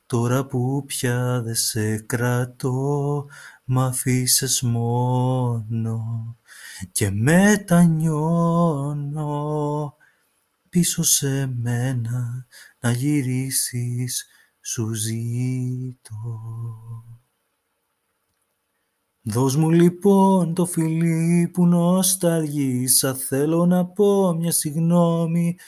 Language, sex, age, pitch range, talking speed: Greek, male, 30-49, 130-180 Hz, 70 wpm